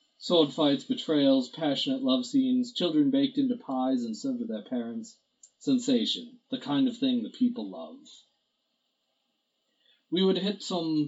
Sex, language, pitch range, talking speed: male, English, 155-260 Hz, 145 wpm